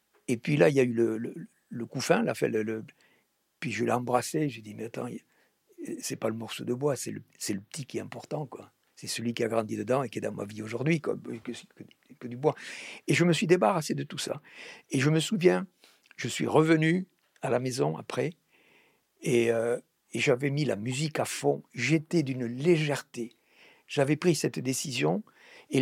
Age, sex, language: 60-79, male, French